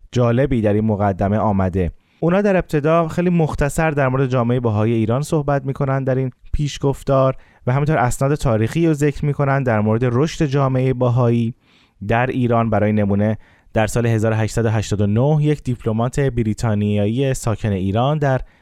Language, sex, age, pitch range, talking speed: Persian, male, 20-39, 110-140 Hz, 145 wpm